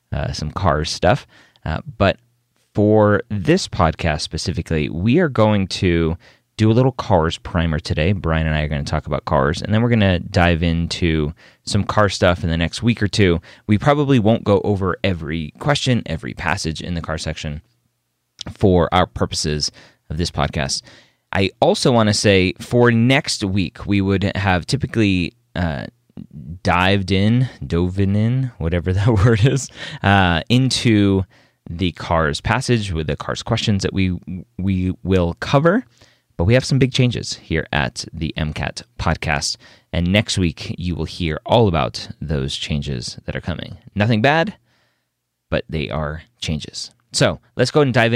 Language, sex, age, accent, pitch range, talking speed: English, male, 30-49, American, 80-115 Hz, 165 wpm